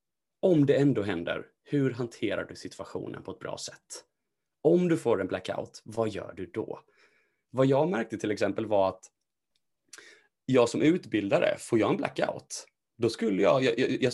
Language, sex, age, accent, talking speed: English, male, 30-49, Swedish, 170 wpm